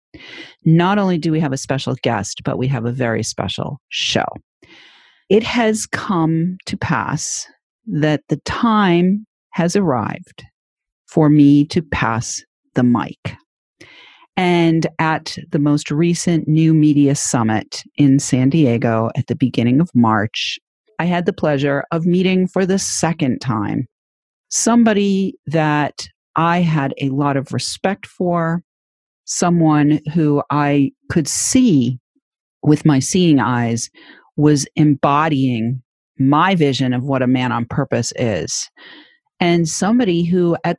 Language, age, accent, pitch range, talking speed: English, 40-59, American, 135-175 Hz, 130 wpm